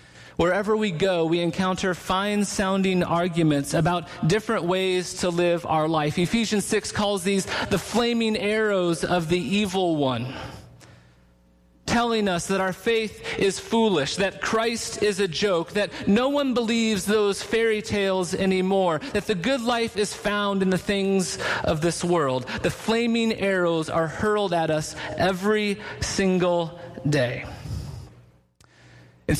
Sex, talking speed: male, 140 wpm